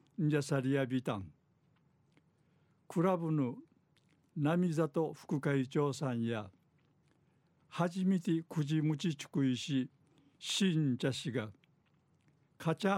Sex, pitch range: male, 140-160 Hz